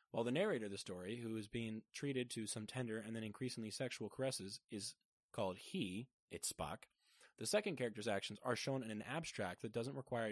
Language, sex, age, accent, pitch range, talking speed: English, male, 20-39, American, 105-125 Hz, 205 wpm